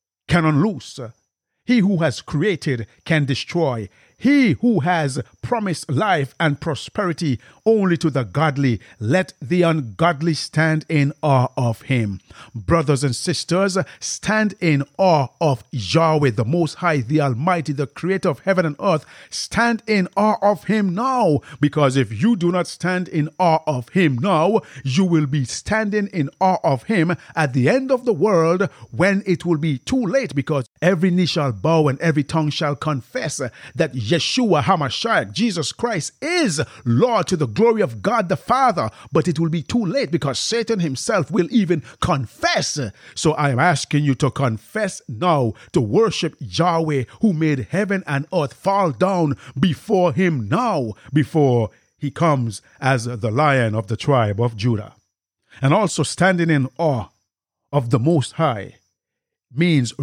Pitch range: 130-180 Hz